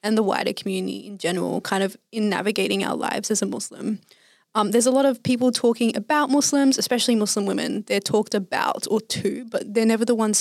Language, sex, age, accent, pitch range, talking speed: English, female, 20-39, Australian, 200-240 Hz, 215 wpm